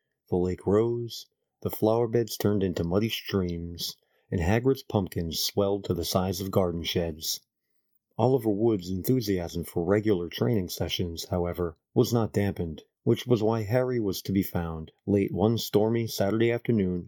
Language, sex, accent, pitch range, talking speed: English, male, American, 90-115 Hz, 155 wpm